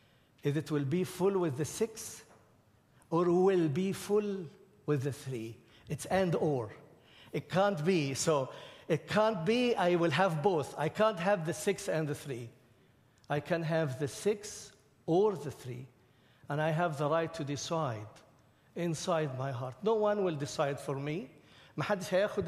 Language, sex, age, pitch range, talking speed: English, male, 60-79, 140-180 Hz, 170 wpm